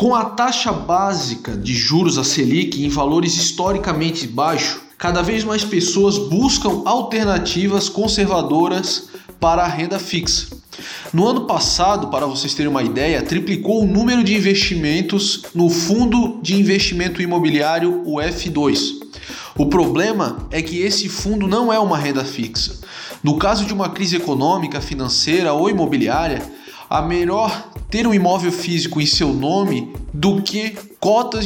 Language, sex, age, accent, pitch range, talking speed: Portuguese, male, 20-39, Brazilian, 165-210 Hz, 145 wpm